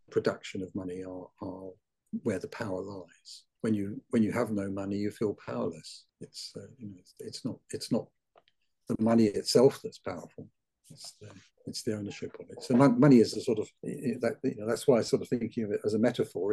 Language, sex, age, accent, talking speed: English, male, 50-69, British, 220 wpm